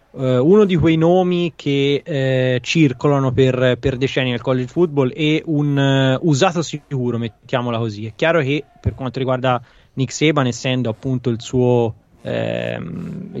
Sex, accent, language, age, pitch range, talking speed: male, native, Italian, 20-39, 120-140 Hz, 150 wpm